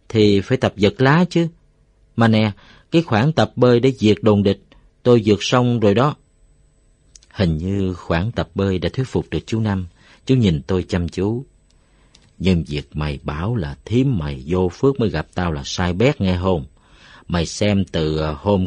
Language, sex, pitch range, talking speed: Vietnamese, male, 90-120 Hz, 185 wpm